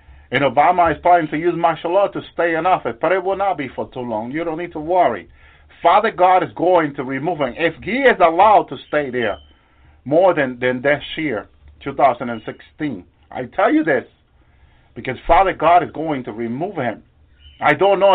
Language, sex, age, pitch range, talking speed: English, male, 50-69, 100-170 Hz, 200 wpm